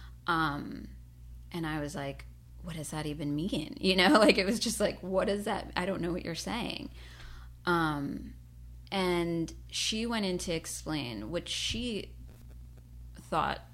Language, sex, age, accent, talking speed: English, female, 20-39, American, 155 wpm